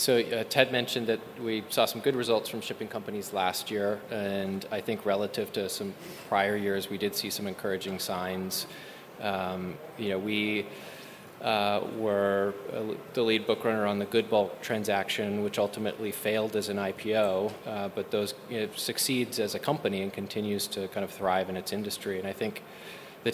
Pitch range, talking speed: 100-110 Hz, 190 wpm